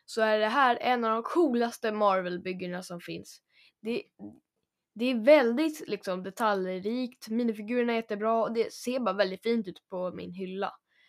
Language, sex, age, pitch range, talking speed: Swedish, female, 10-29, 195-240 Hz, 170 wpm